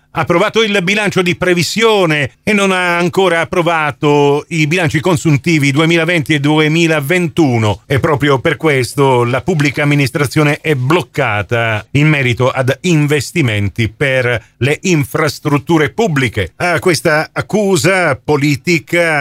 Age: 40-59